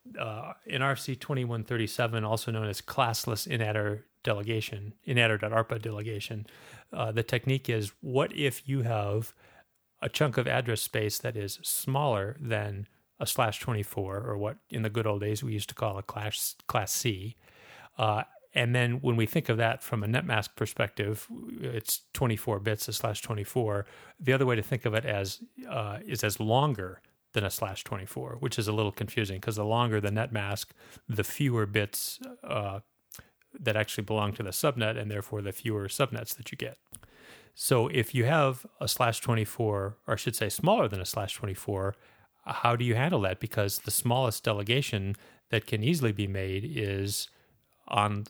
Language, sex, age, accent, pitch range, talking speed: English, male, 40-59, American, 105-120 Hz, 180 wpm